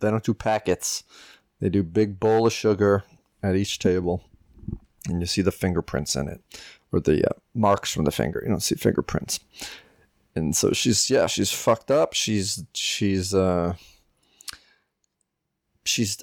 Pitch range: 95-115 Hz